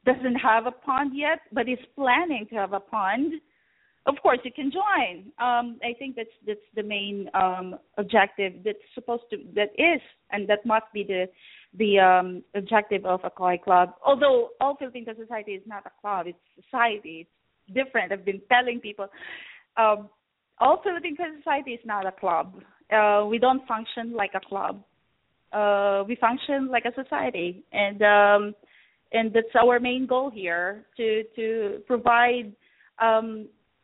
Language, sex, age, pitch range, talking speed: English, female, 20-39, 200-255 Hz, 160 wpm